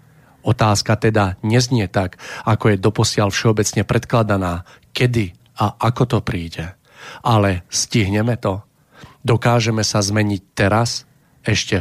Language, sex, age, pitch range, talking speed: Slovak, male, 40-59, 95-115 Hz, 110 wpm